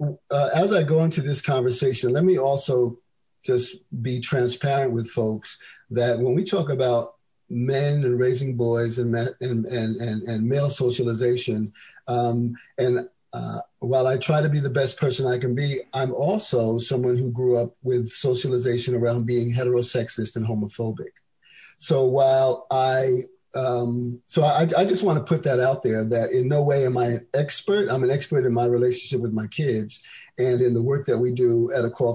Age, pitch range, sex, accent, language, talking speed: 50-69, 120-140 Hz, male, American, English, 190 wpm